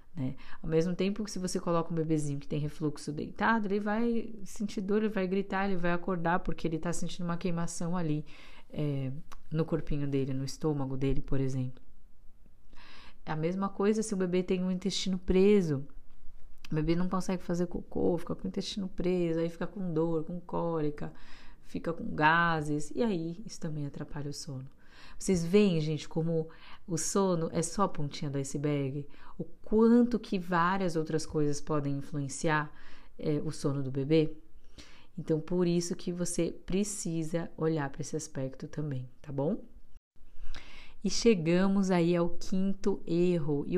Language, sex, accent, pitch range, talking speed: Portuguese, female, Brazilian, 150-190 Hz, 165 wpm